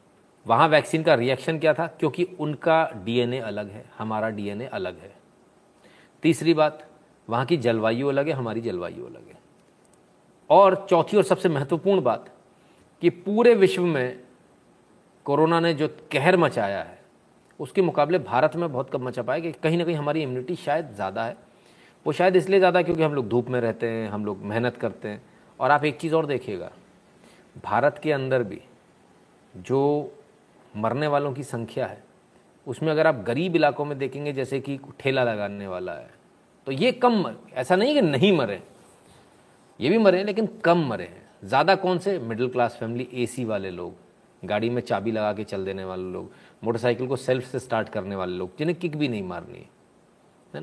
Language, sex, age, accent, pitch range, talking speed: Hindi, male, 40-59, native, 115-165 Hz, 180 wpm